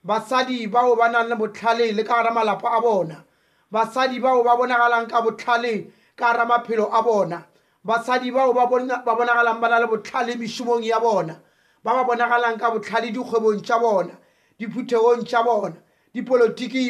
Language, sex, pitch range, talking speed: English, male, 230-255 Hz, 130 wpm